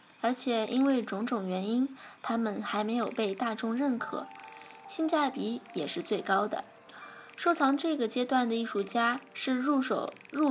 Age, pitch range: 20-39, 220-290 Hz